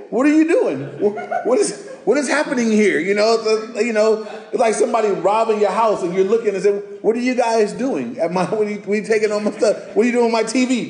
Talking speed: 250 wpm